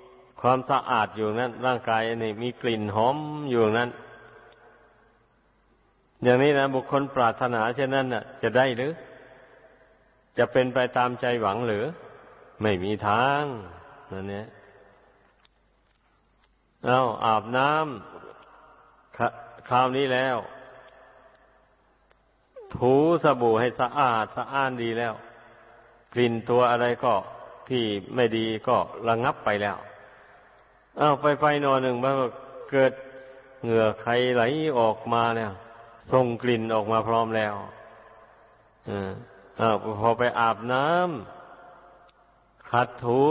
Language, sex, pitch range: Thai, male, 115-135 Hz